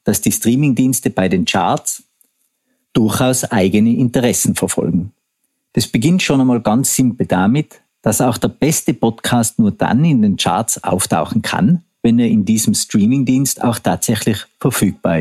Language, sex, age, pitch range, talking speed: German, male, 50-69, 115-155 Hz, 145 wpm